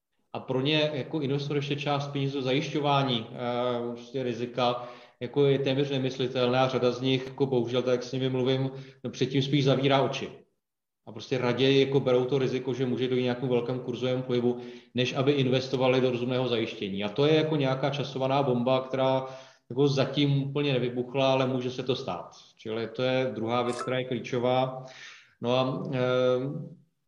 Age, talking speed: 30-49, 175 wpm